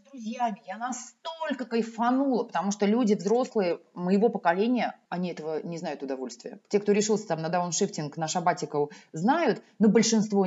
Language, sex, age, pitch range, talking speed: Russian, female, 20-39, 175-255 Hz, 150 wpm